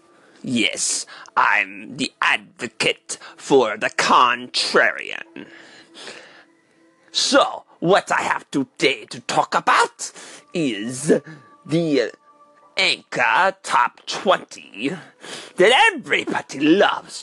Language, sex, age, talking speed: English, male, 40-59, 80 wpm